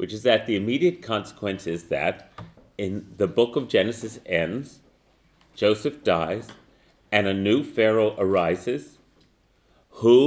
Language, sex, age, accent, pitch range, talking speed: English, male, 40-59, American, 100-125 Hz, 130 wpm